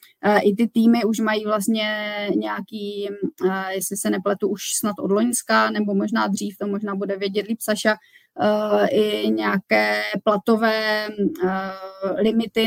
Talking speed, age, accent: 130 wpm, 20-39, native